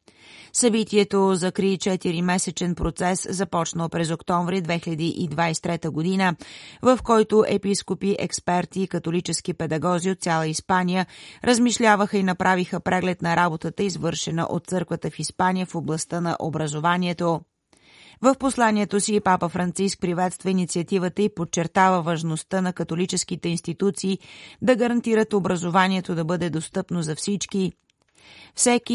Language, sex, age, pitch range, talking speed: Bulgarian, female, 30-49, 170-195 Hz, 115 wpm